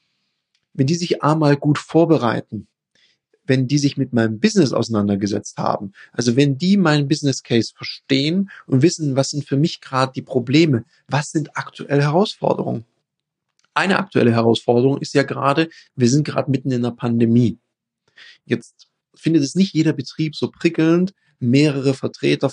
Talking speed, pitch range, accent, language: 150 wpm, 120-150 Hz, German, German